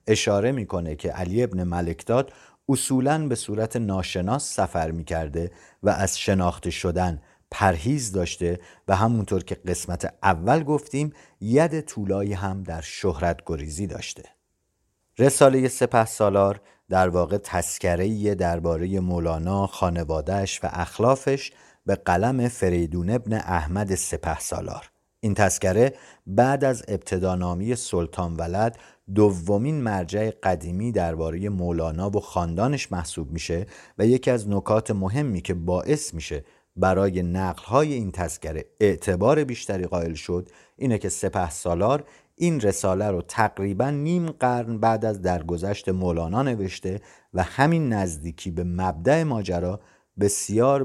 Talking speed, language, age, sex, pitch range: 125 wpm, Persian, 50-69, male, 90-115 Hz